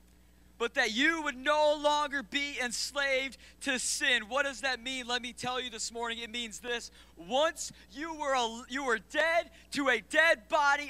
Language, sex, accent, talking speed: English, male, American, 185 wpm